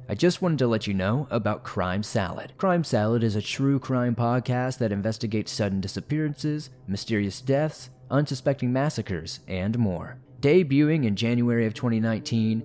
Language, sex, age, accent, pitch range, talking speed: English, male, 30-49, American, 105-135 Hz, 150 wpm